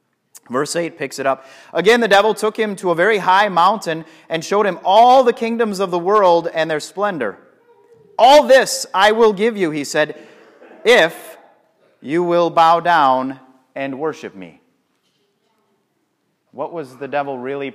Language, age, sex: English, 30-49, male